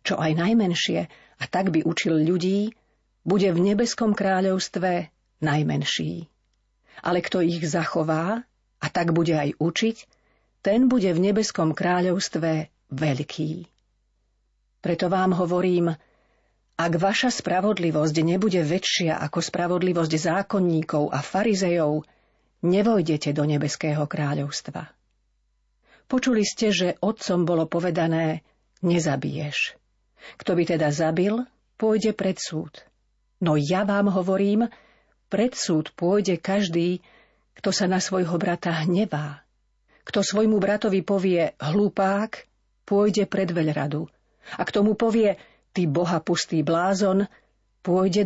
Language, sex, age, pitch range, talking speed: Slovak, female, 40-59, 160-195 Hz, 110 wpm